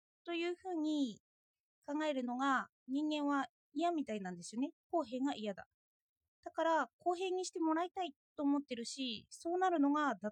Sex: female